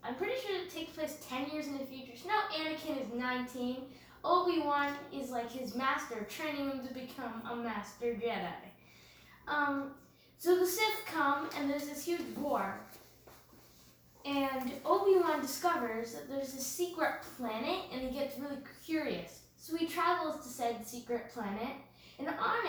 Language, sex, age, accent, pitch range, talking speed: English, female, 10-29, American, 230-300 Hz, 160 wpm